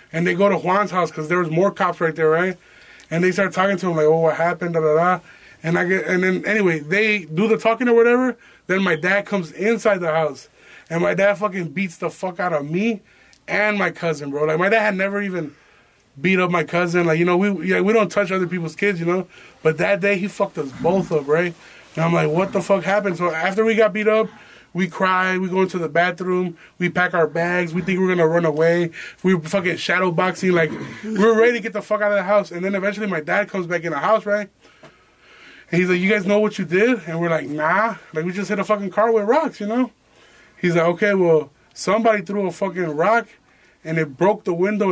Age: 20-39